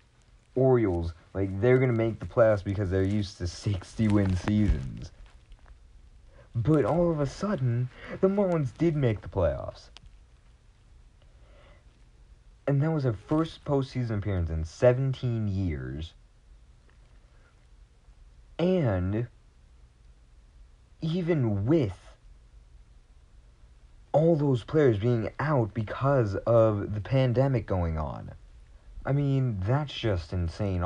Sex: male